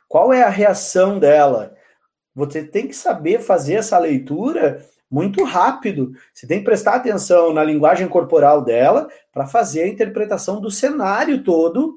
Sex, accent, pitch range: male, Brazilian, 170-255 Hz